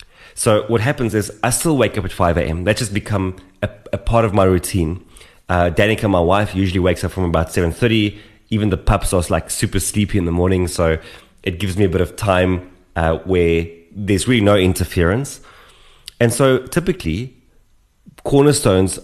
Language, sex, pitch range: English, male, 90-110 Hz